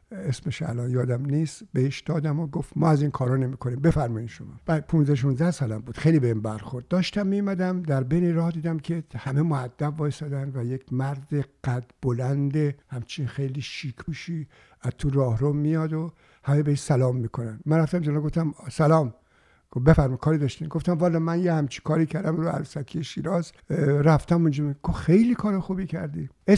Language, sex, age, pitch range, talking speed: Persian, male, 60-79, 130-160 Hz, 165 wpm